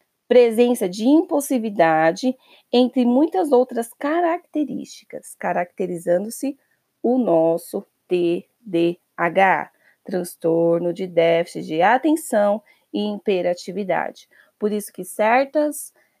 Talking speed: 80 wpm